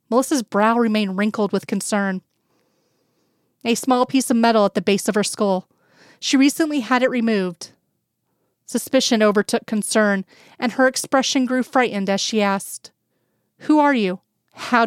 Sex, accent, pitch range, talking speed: female, American, 200-245 Hz, 150 wpm